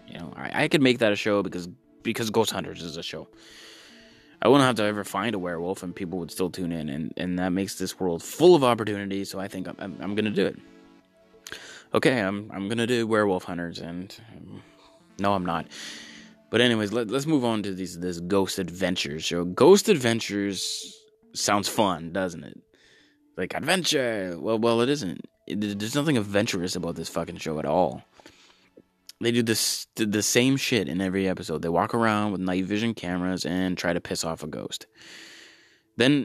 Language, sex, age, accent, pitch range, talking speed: English, male, 20-39, American, 90-115 Hz, 195 wpm